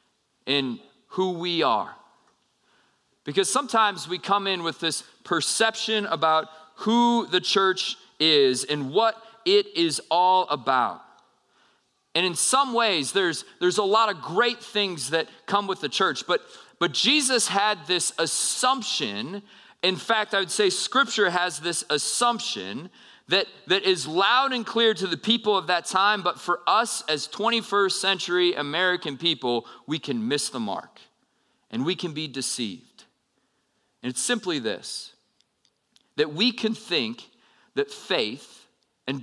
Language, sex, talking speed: English, male, 145 wpm